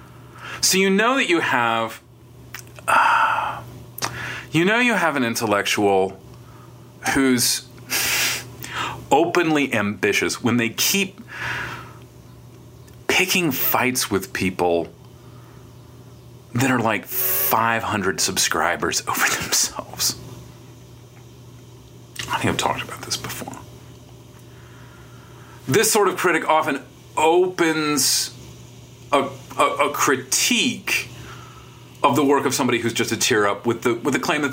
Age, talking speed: 40-59, 105 wpm